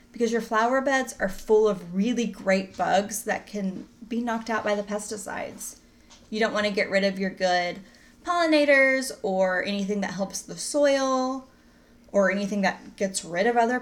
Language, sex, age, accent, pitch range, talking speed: English, female, 10-29, American, 195-245 Hz, 180 wpm